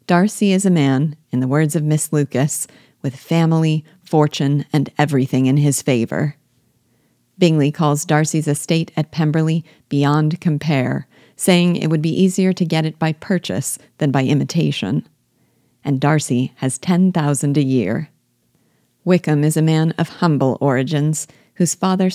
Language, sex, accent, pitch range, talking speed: English, female, American, 140-170 Hz, 150 wpm